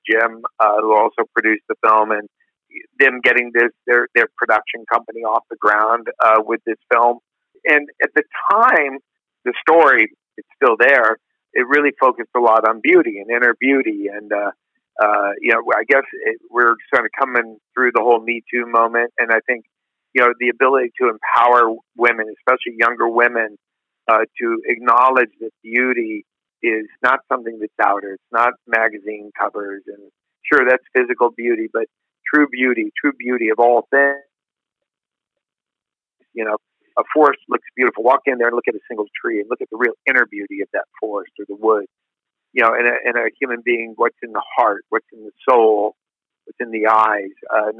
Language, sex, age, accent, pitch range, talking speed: English, male, 50-69, American, 110-135 Hz, 185 wpm